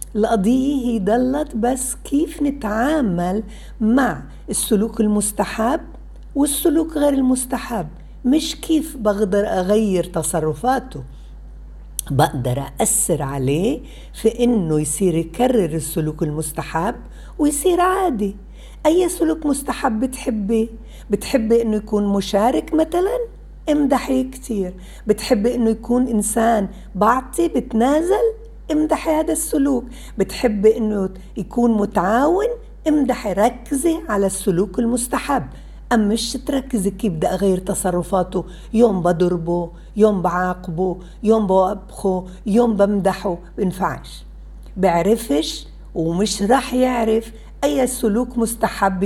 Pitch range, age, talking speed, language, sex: 185-270 Hz, 60-79, 100 wpm, Arabic, female